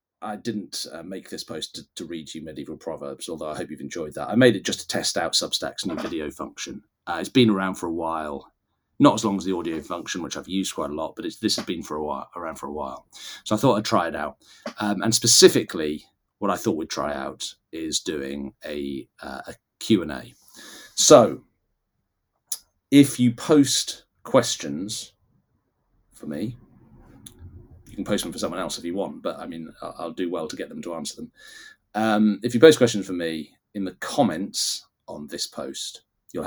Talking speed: 210 wpm